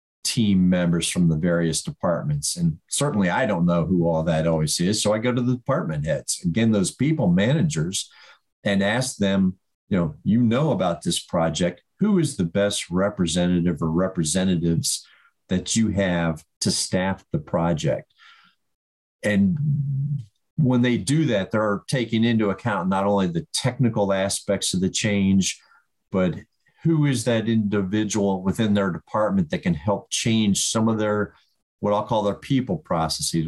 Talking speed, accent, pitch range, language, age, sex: 160 wpm, American, 90-125 Hz, English, 50-69, male